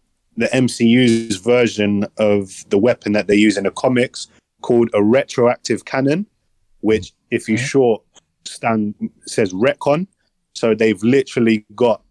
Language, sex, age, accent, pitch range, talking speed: English, male, 20-39, British, 100-120 Hz, 135 wpm